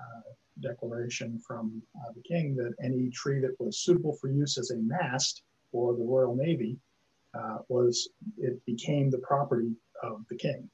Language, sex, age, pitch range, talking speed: English, male, 50-69, 120-140 Hz, 170 wpm